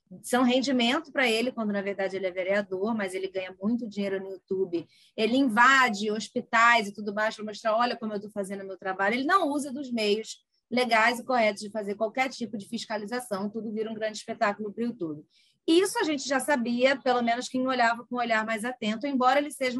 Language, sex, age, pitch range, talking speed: Portuguese, female, 20-39, 205-255 Hz, 220 wpm